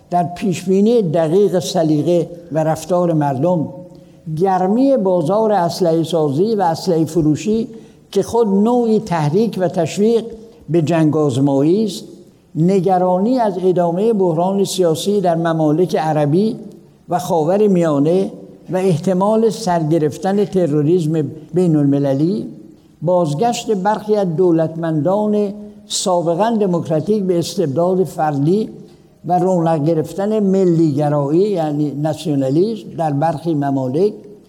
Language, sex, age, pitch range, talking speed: Persian, male, 60-79, 160-200 Hz, 95 wpm